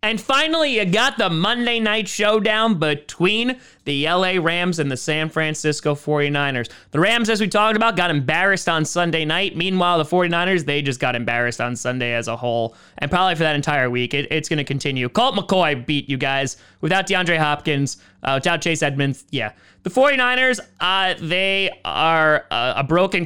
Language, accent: English, American